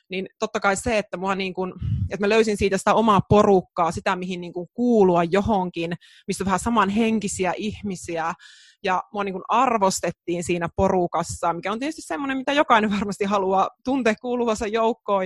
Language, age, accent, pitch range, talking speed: Finnish, 20-39, native, 185-225 Hz, 155 wpm